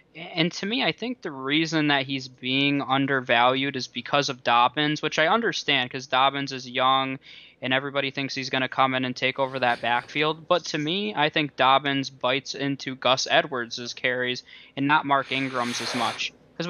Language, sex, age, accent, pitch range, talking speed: English, male, 20-39, American, 130-160 Hz, 190 wpm